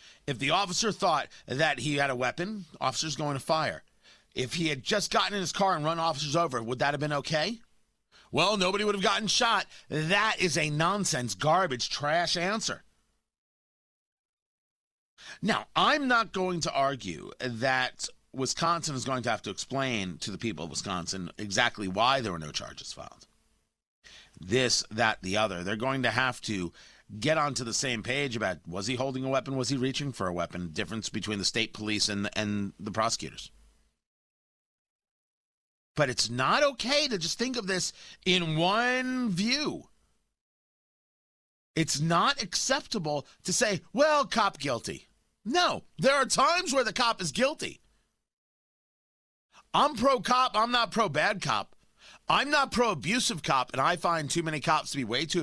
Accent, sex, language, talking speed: American, male, English, 170 wpm